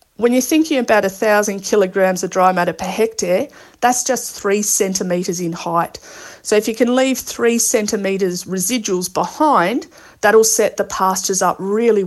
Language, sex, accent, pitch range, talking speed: English, female, Australian, 180-215 Hz, 165 wpm